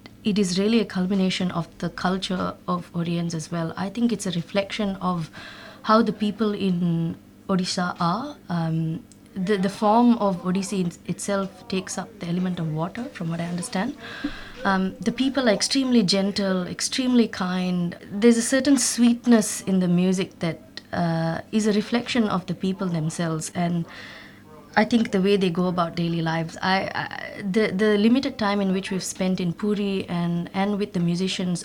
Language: English